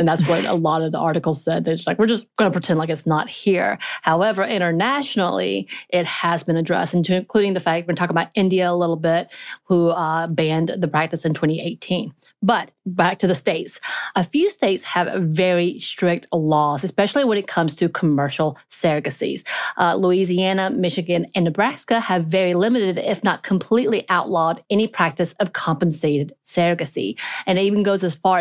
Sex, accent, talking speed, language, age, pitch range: female, American, 180 wpm, English, 30-49, 165-195 Hz